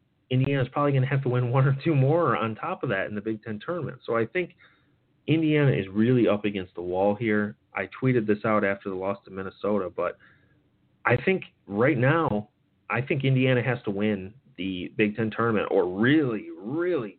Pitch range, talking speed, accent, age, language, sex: 100-135 Hz, 205 wpm, American, 30-49, English, male